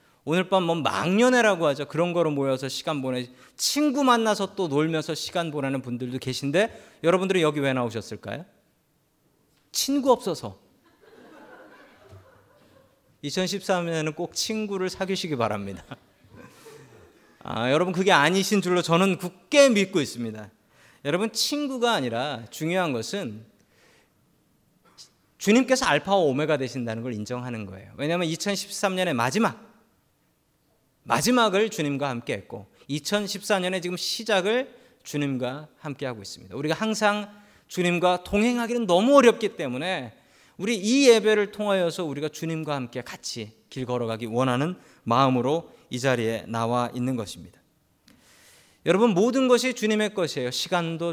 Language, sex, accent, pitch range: Korean, male, native, 130-200 Hz